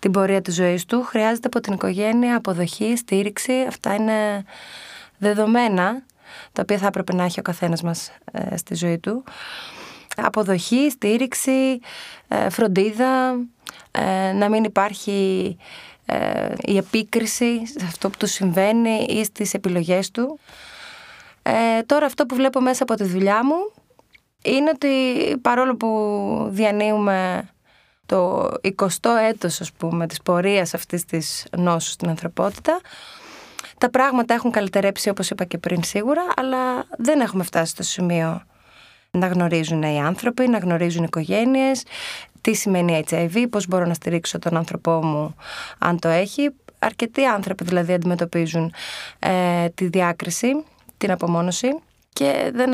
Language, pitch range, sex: Greek, 180-240 Hz, female